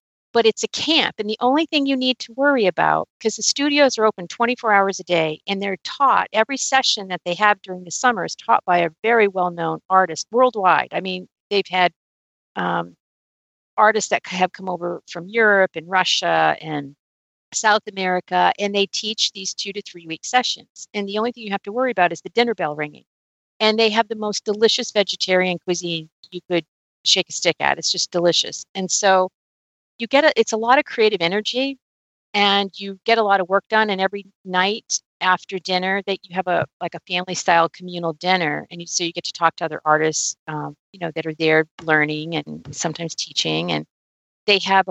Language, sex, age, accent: English, female, 50-69, American